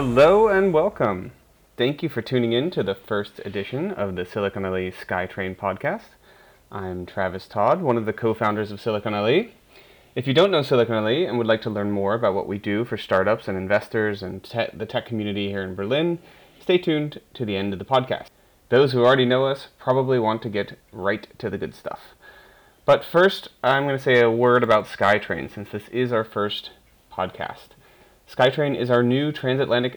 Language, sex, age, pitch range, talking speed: English, male, 30-49, 105-130 Hz, 200 wpm